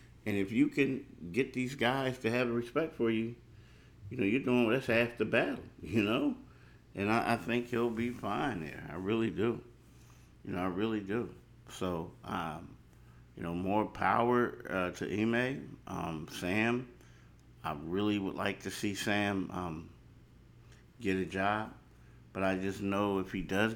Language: English